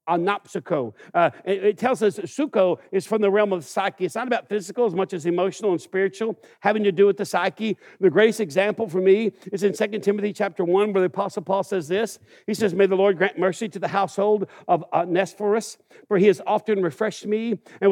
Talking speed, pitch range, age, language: 215 wpm, 185-210 Hz, 60-79, English